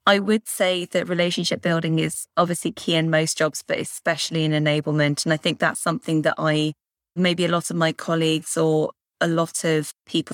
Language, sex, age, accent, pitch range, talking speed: English, female, 20-39, British, 150-170 Hz, 195 wpm